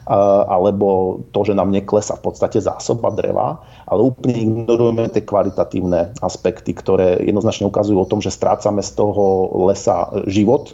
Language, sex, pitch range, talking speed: Slovak, male, 100-115 Hz, 145 wpm